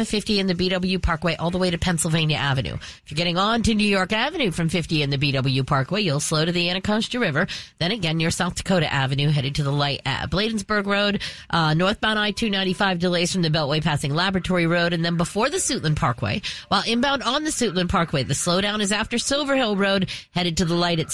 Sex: female